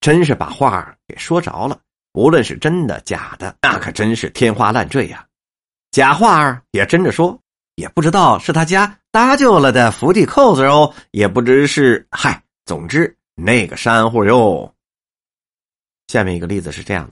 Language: Chinese